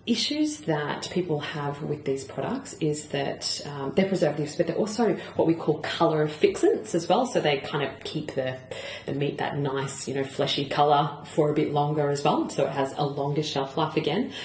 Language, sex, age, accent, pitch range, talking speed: English, female, 30-49, Australian, 145-170 Hz, 210 wpm